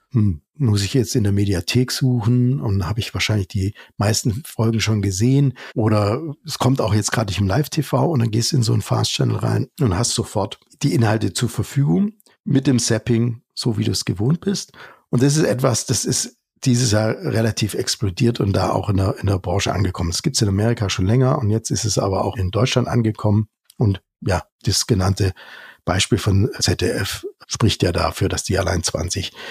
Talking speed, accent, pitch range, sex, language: 200 wpm, German, 105-130 Hz, male, German